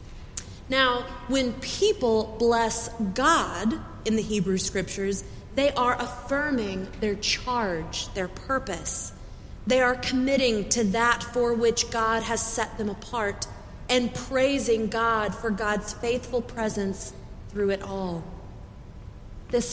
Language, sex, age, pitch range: English, female, 30-49, 195-240 Hz